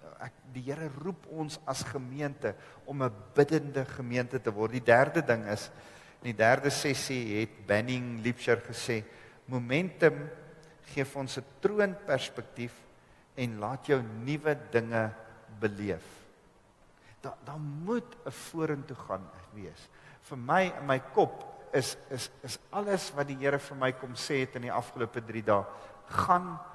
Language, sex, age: English, male, 50-69